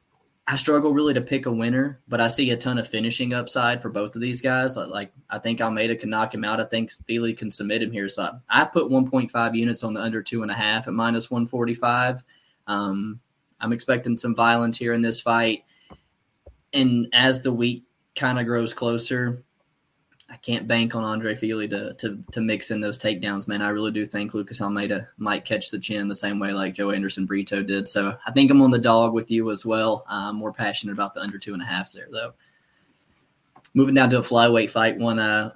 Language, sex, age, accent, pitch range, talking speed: English, male, 20-39, American, 110-125 Hz, 220 wpm